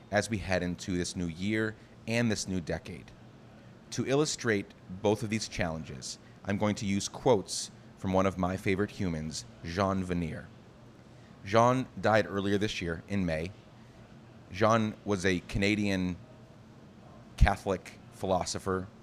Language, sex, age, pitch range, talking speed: English, male, 30-49, 95-115 Hz, 135 wpm